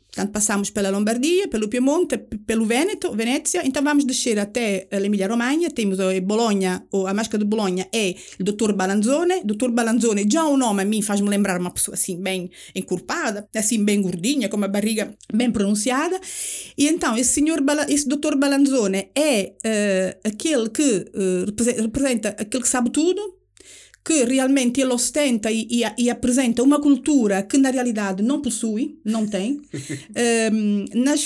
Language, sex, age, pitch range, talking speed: Portuguese, female, 40-59, 205-265 Hz, 155 wpm